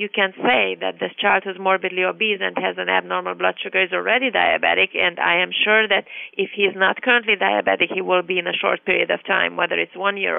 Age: 30-49